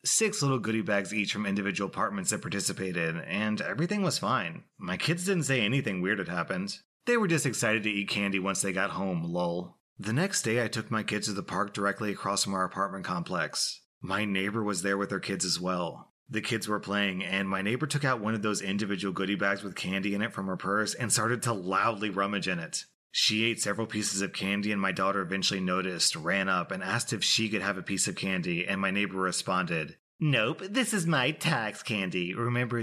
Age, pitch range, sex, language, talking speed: 30-49, 100-135 Hz, male, English, 225 wpm